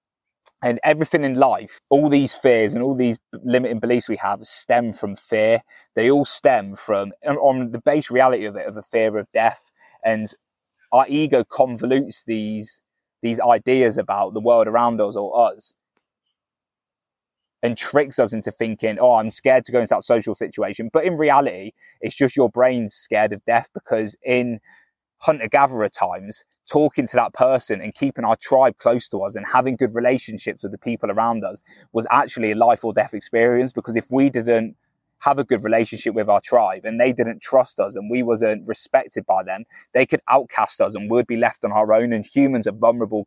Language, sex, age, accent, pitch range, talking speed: English, male, 20-39, British, 110-125 Hz, 195 wpm